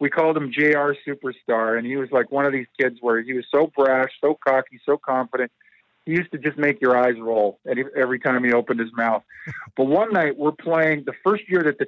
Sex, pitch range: male, 125-150 Hz